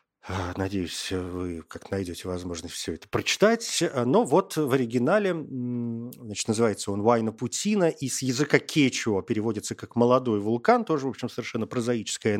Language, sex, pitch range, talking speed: Russian, male, 110-155 Hz, 140 wpm